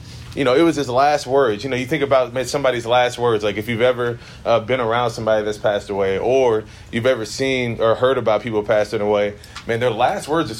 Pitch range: 105-120 Hz